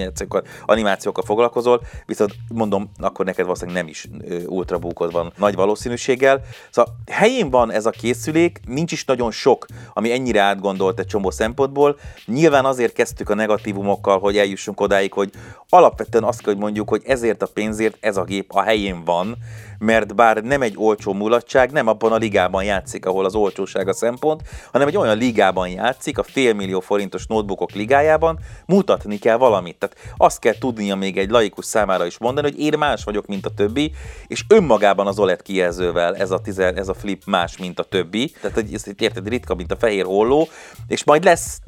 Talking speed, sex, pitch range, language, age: 175 wpm, male, 95-120 Hz, Hungarian, 30-49